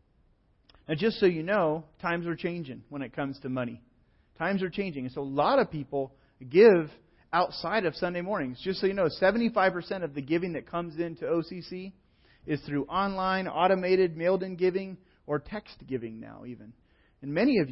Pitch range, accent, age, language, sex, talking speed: 135-190 Hz, American, 30-49, English, male, 180 wpm